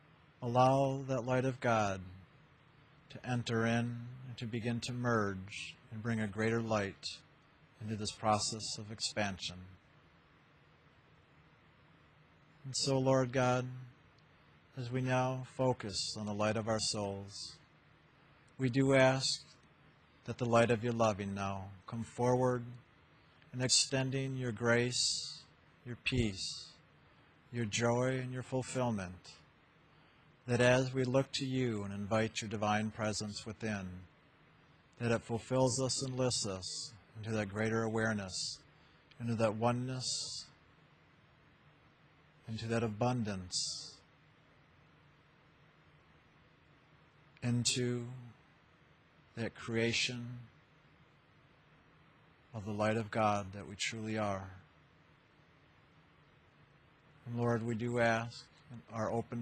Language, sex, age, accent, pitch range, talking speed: English, male, 50-69, American, 110-130 Hz, 110 wpm